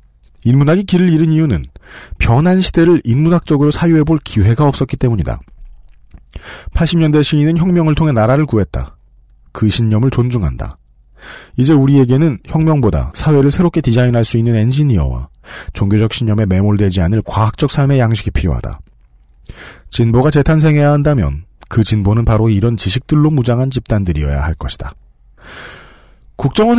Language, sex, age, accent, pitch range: Korean, male, 40-59, native, 95-150 Hz